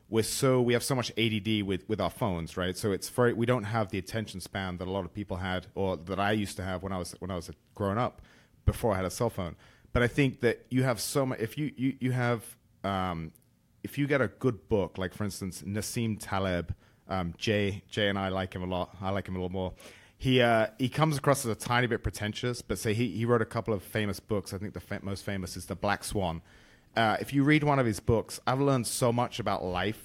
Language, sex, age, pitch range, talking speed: English, male, 30-49, 95-120 Hz, 265 wpm